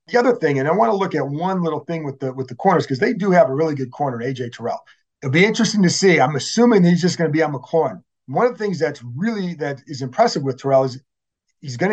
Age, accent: 40-59, American